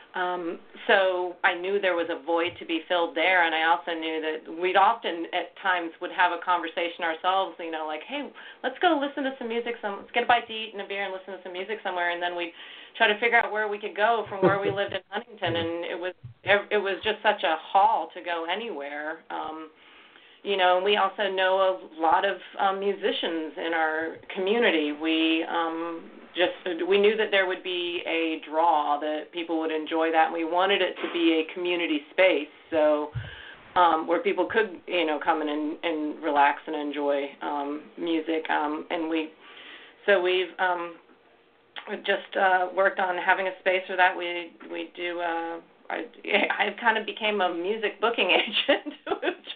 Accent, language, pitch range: American, English, 165-200 Hz